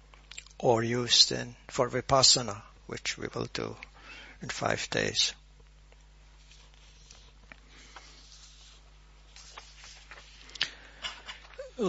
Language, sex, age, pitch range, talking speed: English, male, 60-79, 115-140 Hz, 65 wpm